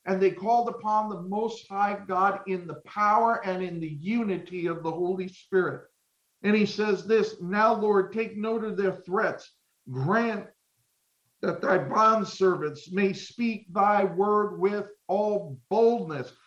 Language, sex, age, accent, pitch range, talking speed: English, male, 50-69, American, 185-220 Hz, 150 wpm